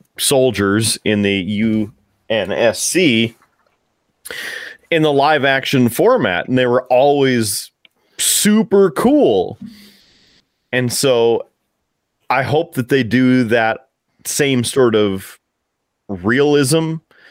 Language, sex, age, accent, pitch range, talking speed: English, male, 30-49, American, 110-150 Hz, 95 wpm